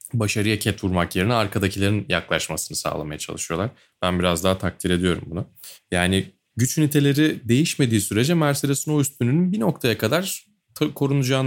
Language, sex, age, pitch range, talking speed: Turkish, male, 30-49, 95-125 Hz, 130 wpm